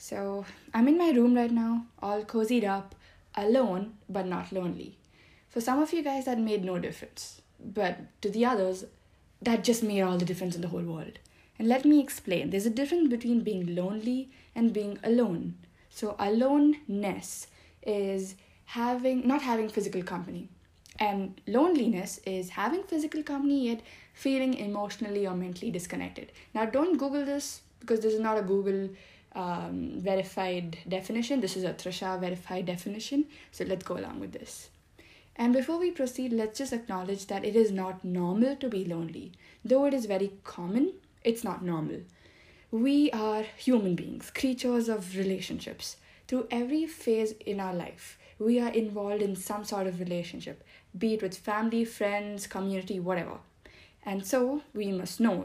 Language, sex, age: English, female, 20-39